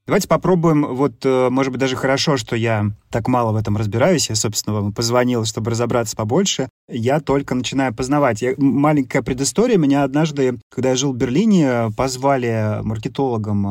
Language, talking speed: Ukrainian, 160 wpm